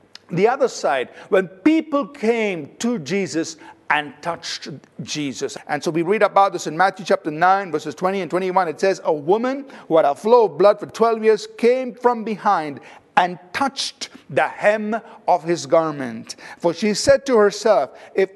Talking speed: 175 wpm